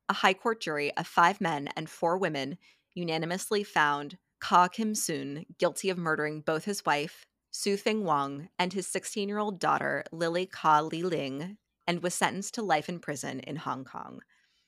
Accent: American